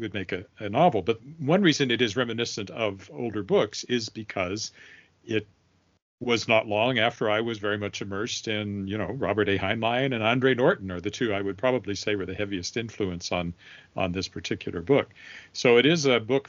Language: English